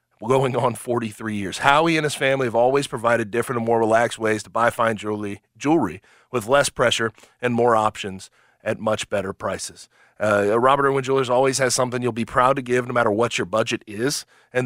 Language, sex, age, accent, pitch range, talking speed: English, male, 30-49, American, 110-140 Hz, 210 wpm